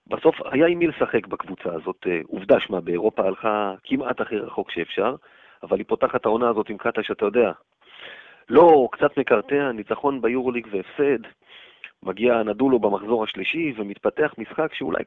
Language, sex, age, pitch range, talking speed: Hebrew, male, 30-49, 105-145 Hz, 145 wpm